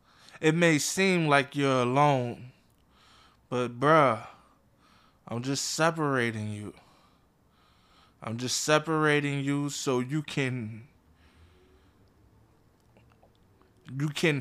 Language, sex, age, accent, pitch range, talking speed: English, male, 20-39, American, 120-155 Hz, 85 wpm